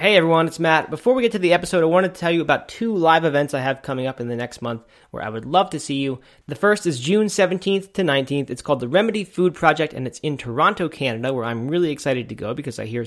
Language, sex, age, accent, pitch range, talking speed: English, male, 30-49, American, 130-165 Hz, 280 wpm